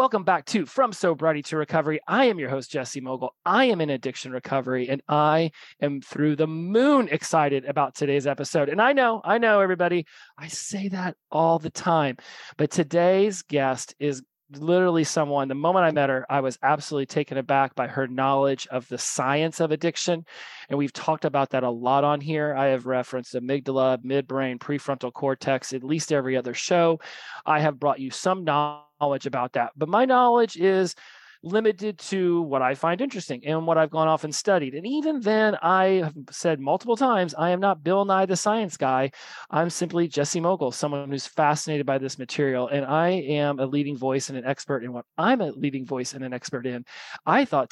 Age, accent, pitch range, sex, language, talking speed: 30-49, American, 135-170 Hz, male, English, 200 wpm